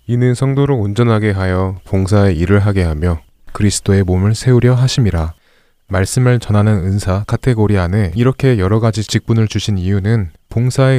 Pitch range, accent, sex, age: 95-125 Hz, native, male, 20-39